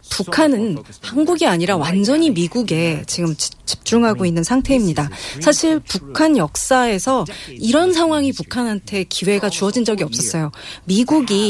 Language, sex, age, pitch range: Korean, female, 30-49, 180-255 Hz